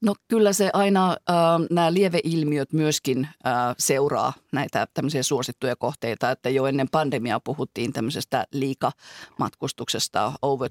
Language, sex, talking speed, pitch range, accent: Finnish, female, 120 wpm, 135-155 Hz, native